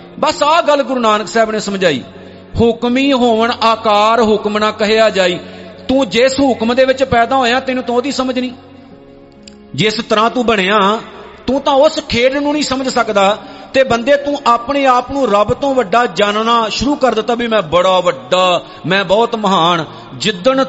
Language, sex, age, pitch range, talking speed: Punjabi, male, 50-69, 185-255 Hz, 170 wpm